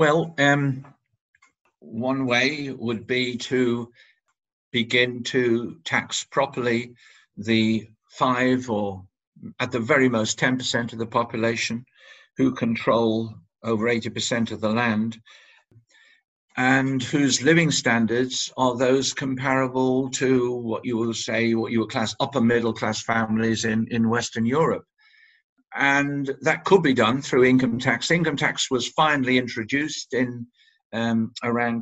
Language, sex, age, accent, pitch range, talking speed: English, male, 50-69, British, 115-130 Hz, 130 wpm